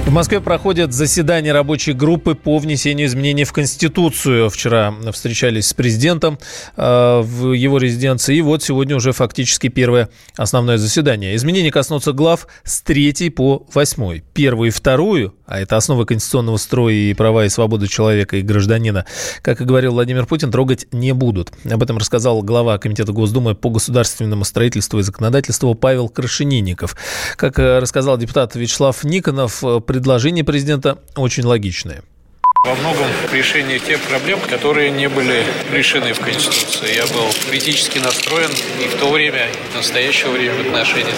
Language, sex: Russian, male